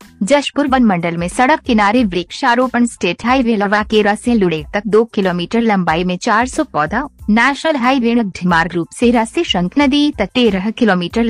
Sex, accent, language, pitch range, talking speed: female, native, Hindi, 190-255 Hz, 160 wpm